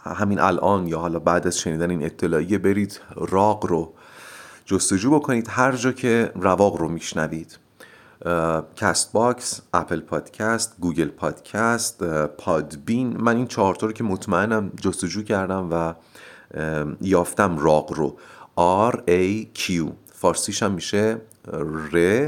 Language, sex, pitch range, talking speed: Persian, male, 85-120 Hz, 125 wpm